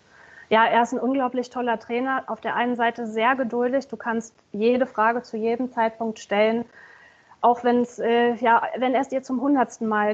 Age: 30-49